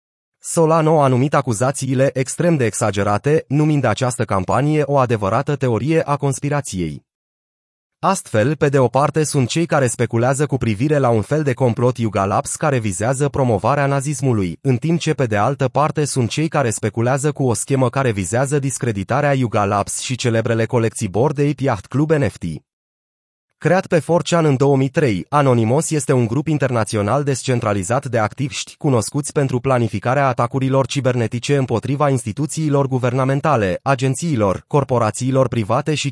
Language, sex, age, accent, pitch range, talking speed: Romanian, male, 30-49, native, 120-150 Hz, 145 wpm